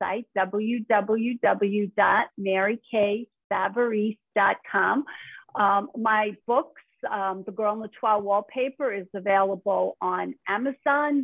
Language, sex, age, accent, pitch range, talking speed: English, female, 50-69, American, 205-260 Hz, 80 wpm